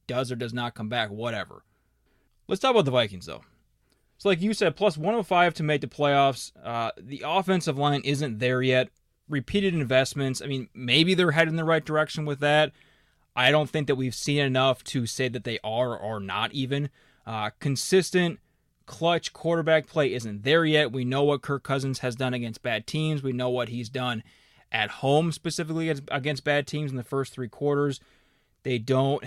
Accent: American